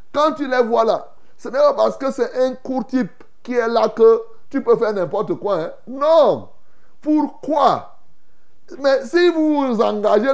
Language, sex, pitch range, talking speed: French, male, 200-285 Hz, 170 wpm